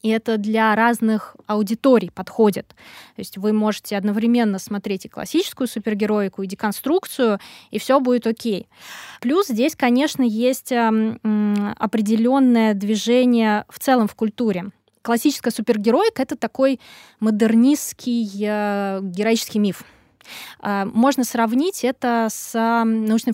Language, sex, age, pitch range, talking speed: Russian, female, 20-39, 210-250 Hz, 115 wpm